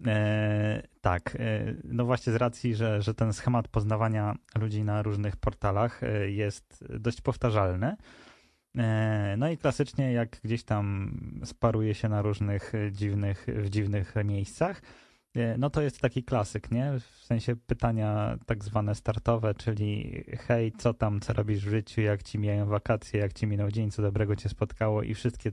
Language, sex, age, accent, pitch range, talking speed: Polish, male, 20-39, native, 105-120 Hz, 160 wpm